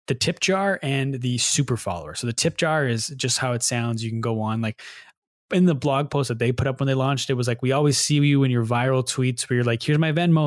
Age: 20-39